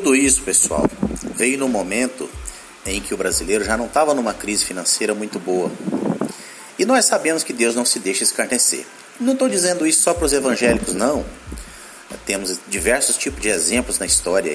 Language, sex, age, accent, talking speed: Portuguese, male, 40-59, Brazilian, 175 wpm